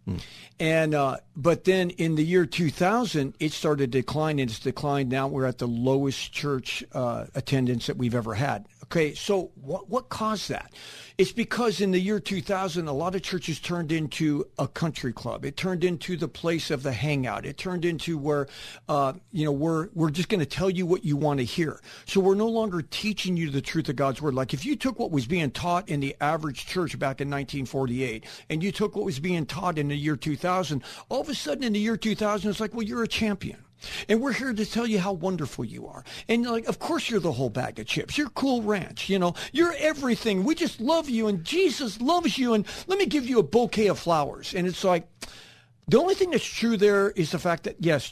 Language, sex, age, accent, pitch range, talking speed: English, male, 50-69, American, 145-205 Hz, 230 wpm